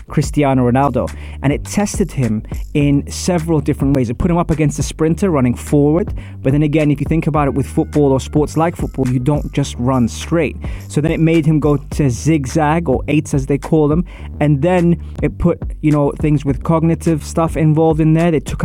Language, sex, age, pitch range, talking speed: English, male, 20-39, 130-160 Hz, 215 wpm